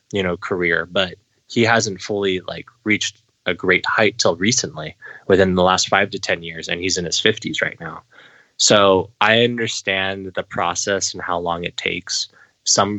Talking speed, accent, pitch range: 180 wpm, American, 90-105 Hz